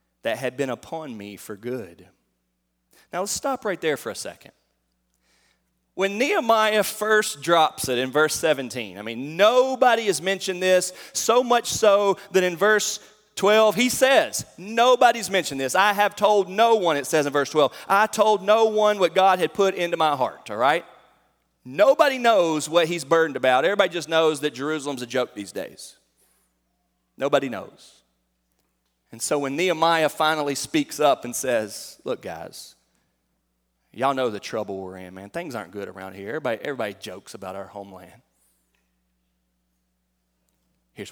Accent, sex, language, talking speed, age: American, male, English, 160 wpm, 30-49